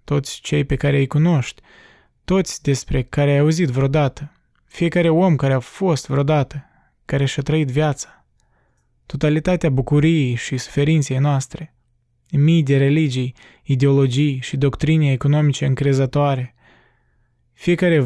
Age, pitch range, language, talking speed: 20-39, 135-155 Hz, Romanian, 120 wpm